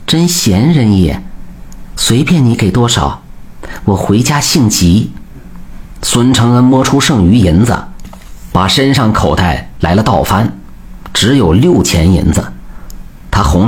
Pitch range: 90-125 Hz